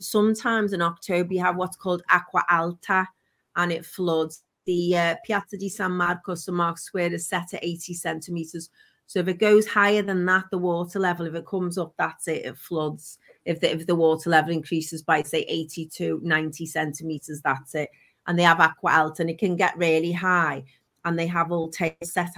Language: English